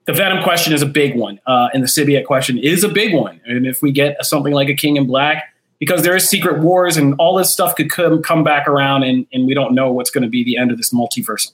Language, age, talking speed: English, 30-49, 285 wpm